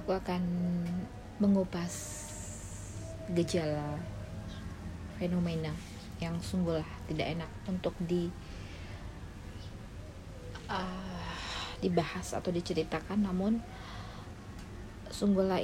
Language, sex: Indonesian, female